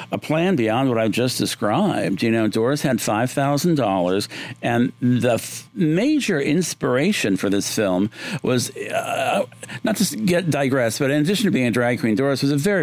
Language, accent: English, American